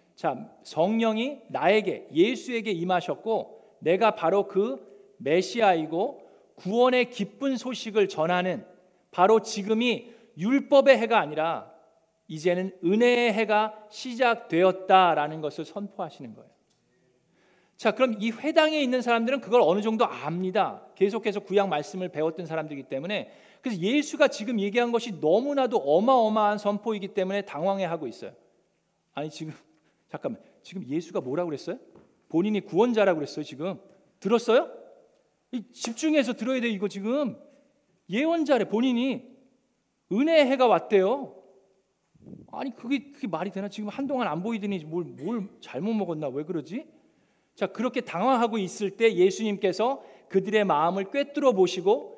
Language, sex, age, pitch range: Korean, male, 40-59, 185-250 Hz